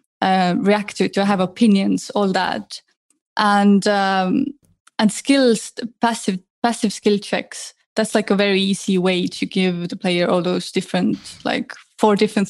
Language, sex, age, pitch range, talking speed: English, female, 20-39, 190-225 Hz, 160 wpm